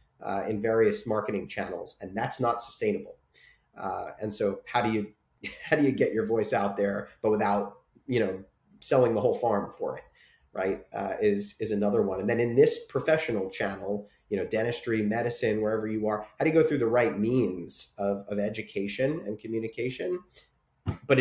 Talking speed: 185 wpm